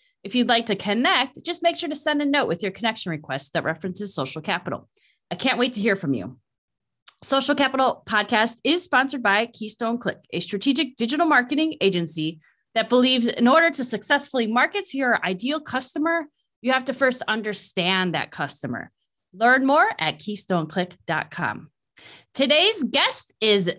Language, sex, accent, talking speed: English, female, American, 165 wpm